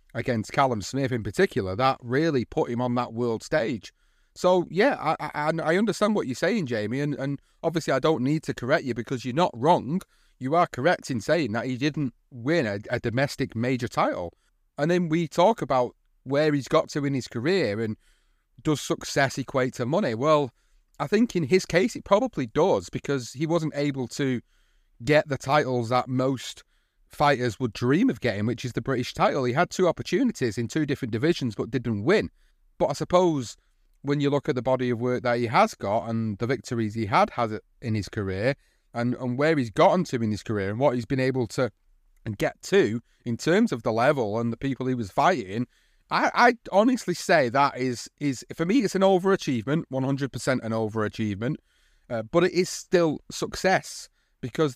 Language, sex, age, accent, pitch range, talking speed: English, male, 30-49, British, 120-155 Hz, 205 wpm